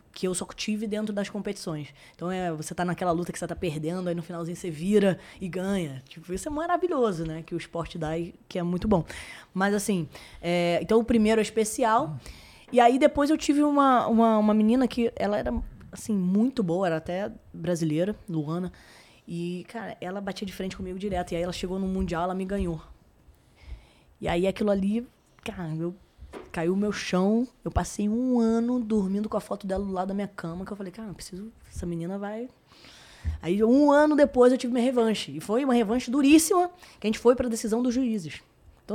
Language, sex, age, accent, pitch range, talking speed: Portuguese, female, 20-39, Brazilian, 175-235 Hz, 205 wpm